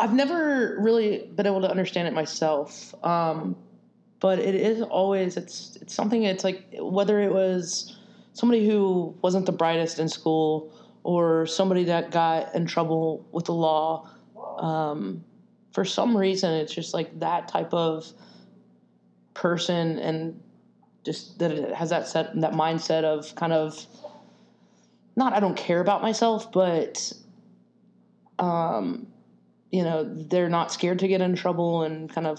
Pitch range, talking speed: 155-190 Hz, 155 wpm